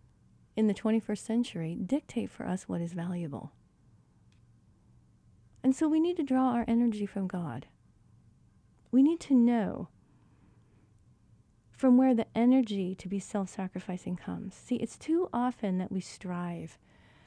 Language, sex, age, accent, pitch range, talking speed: English, female, 40-59, American, 185-240 Hz, 135 wpm